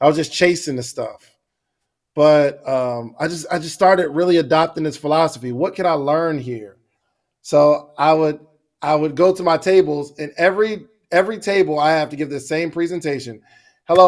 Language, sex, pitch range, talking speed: English, male, 155-190 Hz, 185 wpm